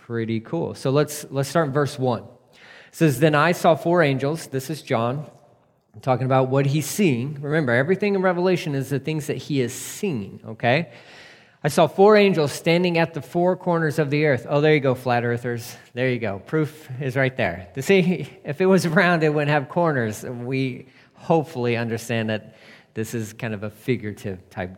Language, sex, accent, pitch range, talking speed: English, male, American, 125-155 Hz, 200 wpm